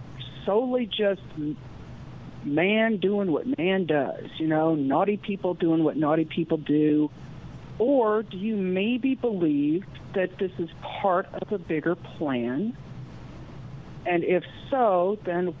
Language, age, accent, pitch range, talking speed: English, 50-69, American, 145-200 Hz, 125 wpm